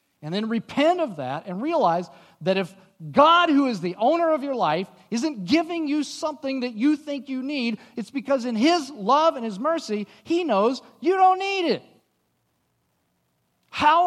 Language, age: English, 40-59